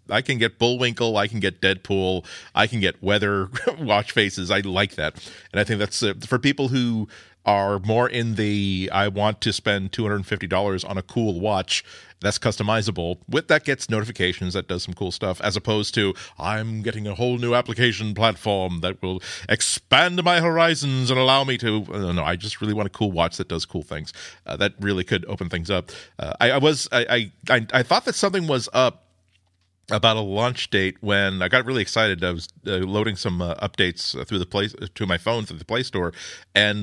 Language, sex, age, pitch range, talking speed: English, male, 40-59, 95-115 Hz, 200 wpm